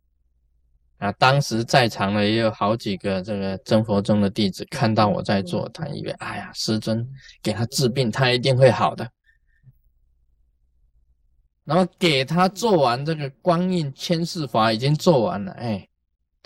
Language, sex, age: Chinese, male, 10-29